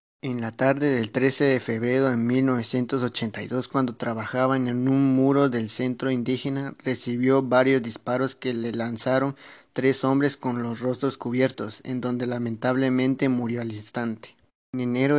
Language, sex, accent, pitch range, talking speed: Spanish, male, Mexican, 120-135 Hz, 145 wpm